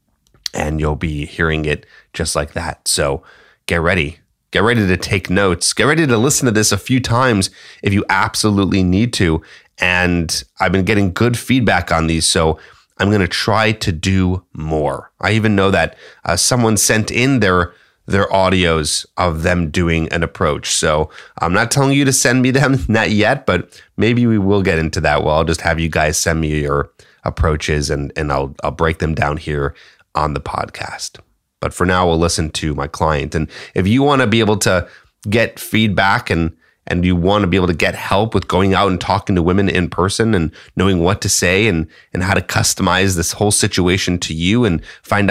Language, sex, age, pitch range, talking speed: English, male, 30-49, 85-110 Hz, 205 wpm